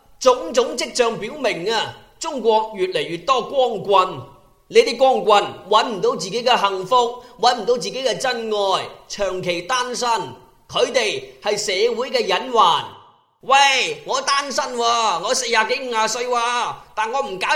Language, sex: Chinese, male